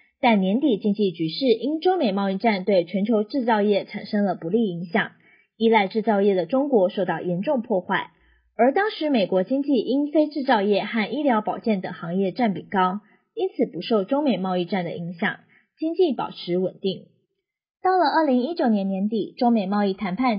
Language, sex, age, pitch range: Chinese, female, 20-39, 190-255 Hz